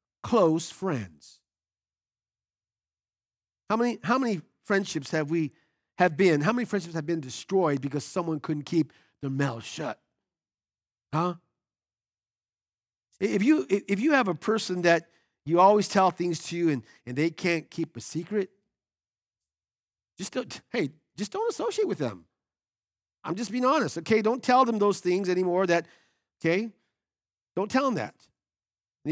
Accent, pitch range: American, 150-230 Hz